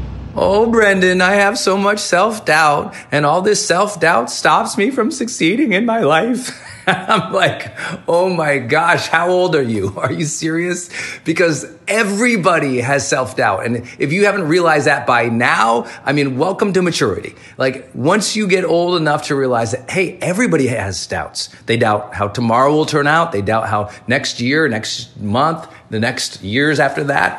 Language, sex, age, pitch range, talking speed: English, male, 30-49, 125-180 Hz, 175 wpm